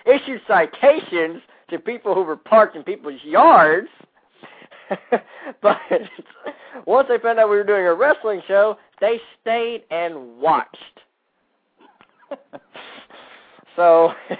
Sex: male